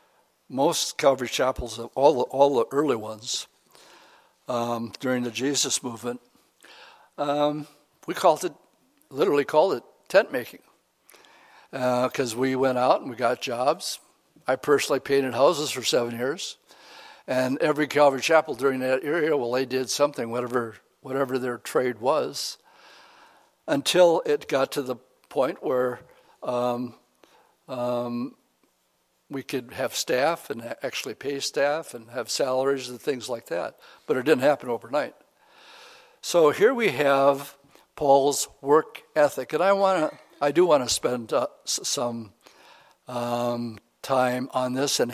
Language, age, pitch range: English, 60-79, 125-150 Hz